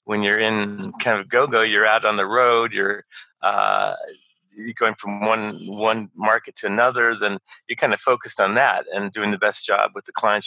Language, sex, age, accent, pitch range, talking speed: English, male, 40-59, American, 100-120 Hz, 210 wpm